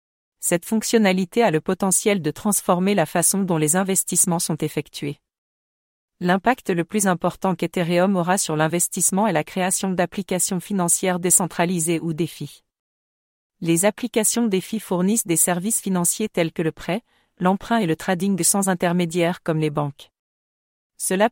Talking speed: 145 wpm